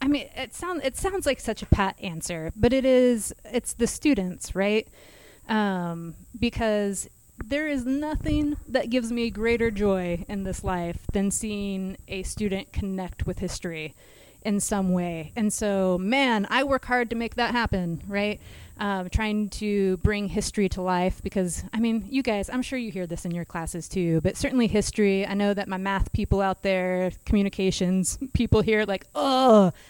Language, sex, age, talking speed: English, female, 30-49, 180 wpm